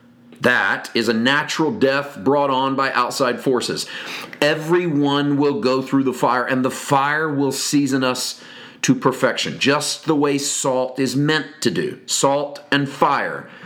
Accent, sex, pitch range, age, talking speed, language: American, male, 125-150 Hz, 40-59, 155 wpm, English